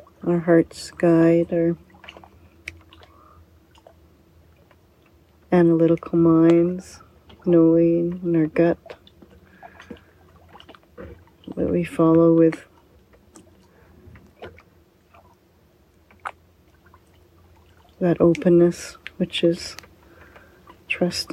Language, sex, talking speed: English, female, 55 wpm